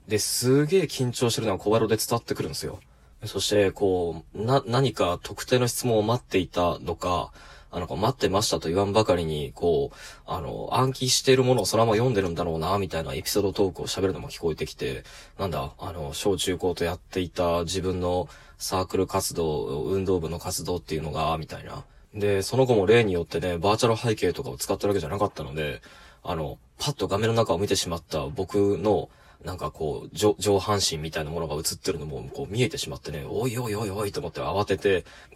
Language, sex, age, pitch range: Japanese, male, 20-39, 90-115 Hz